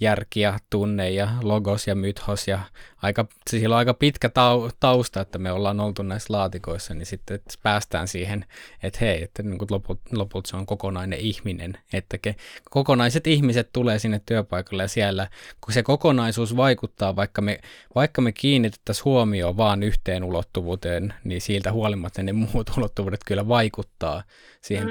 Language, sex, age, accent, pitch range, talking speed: Finnish, male, 20-39, native, 100-115 Hz, 155 wpm